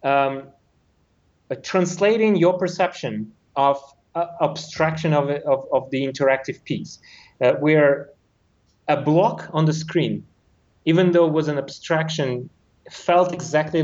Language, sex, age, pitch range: English, male, 30-49, 130-165 Hz